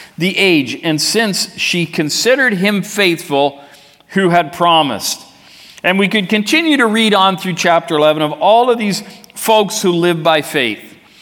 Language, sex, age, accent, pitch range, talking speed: English, male, 50-69, American, 150-200 Hz, 160 wpm